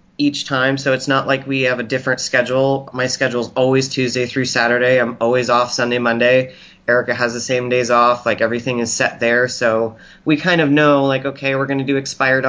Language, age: English, 30-49